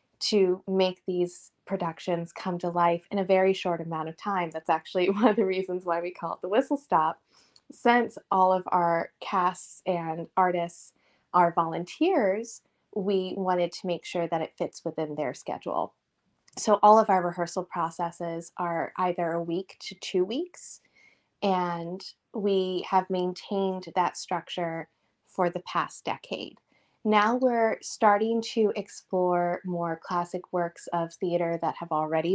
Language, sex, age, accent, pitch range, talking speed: English, female, 20-39, American, 165-190 Hz, 155 wpm